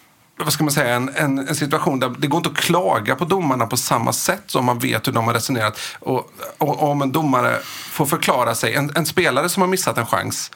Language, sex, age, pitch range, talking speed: Swedish, male, 30-49, 115-140 Hz, 245 wpm